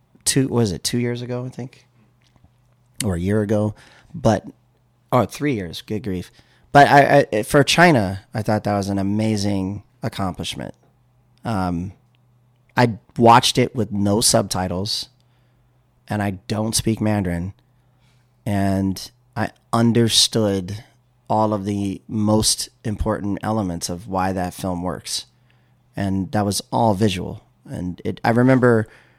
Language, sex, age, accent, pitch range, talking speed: English, male, 30-49, American, 100-125 Hz, 135 wpm